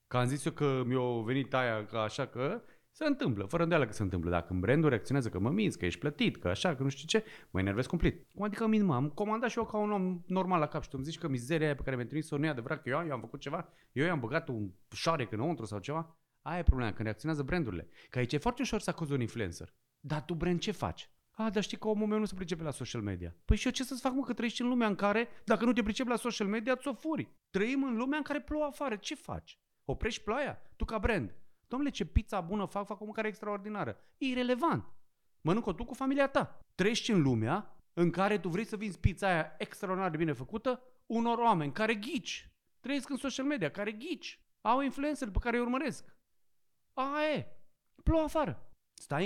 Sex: male